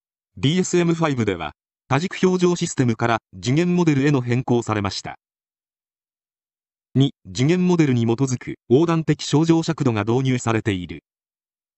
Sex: male